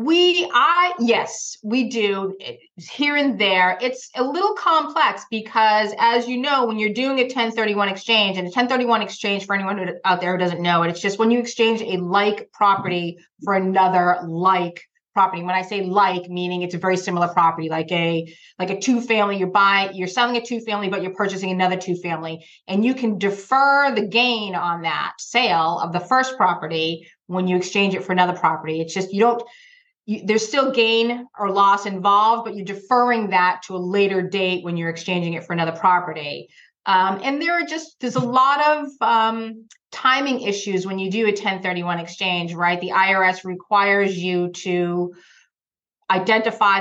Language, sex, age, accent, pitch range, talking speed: English, female, 30-49, American, 180-230 Hz, 190 wpm